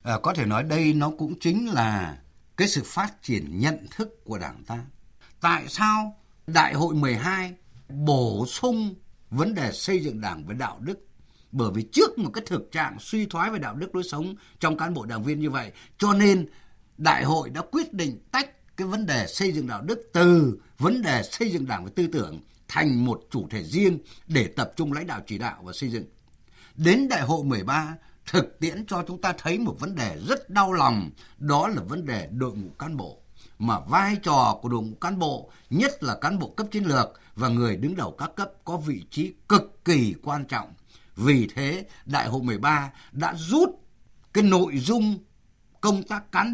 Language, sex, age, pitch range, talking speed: Vietnamese, male, 60-79, 120-190 Hz, 205 wpm